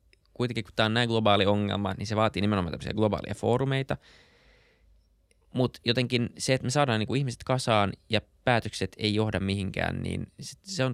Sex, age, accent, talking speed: male, 20-39, native, 160 wpm